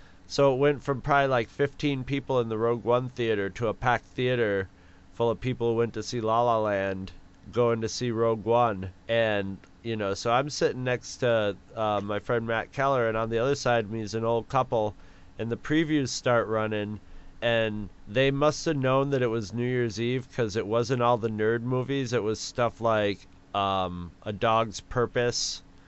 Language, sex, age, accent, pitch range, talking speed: English, male, 30-49, American, 105-130 Hz, 200 wpm